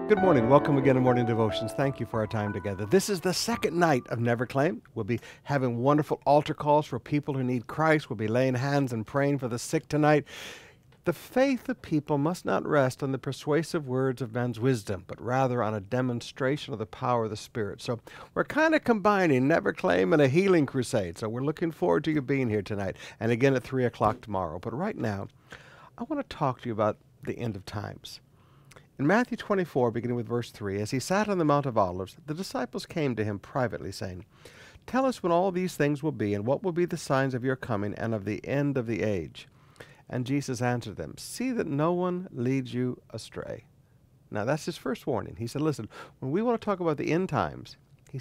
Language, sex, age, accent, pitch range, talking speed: English, male, 60-79, American, 120-165 Hz, 225 wpm